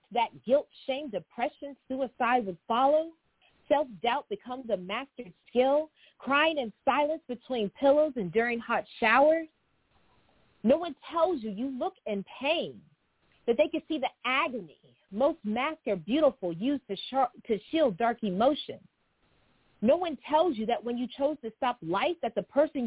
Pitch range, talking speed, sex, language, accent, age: 220-295 Hz, 155 wpm, female, English, American, 40-59